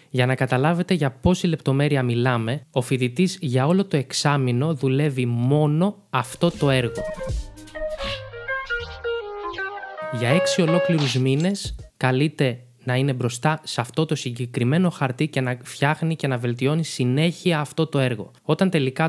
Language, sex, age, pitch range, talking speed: Greek, male, 20-39, 130-160 Hz, 135 wpm